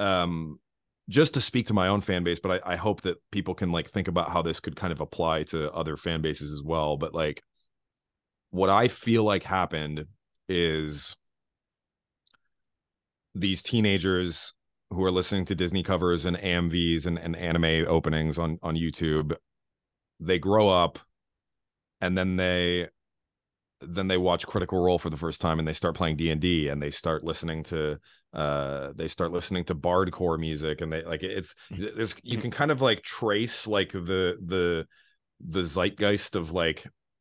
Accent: American